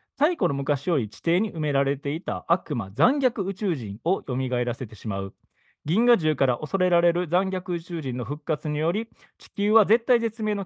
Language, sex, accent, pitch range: Japanese, male, native, 120-195 Hz